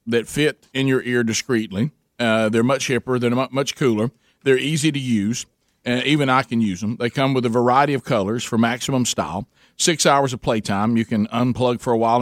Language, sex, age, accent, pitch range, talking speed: English, male, 50-69, American, 105-130 Hz, 210 wpm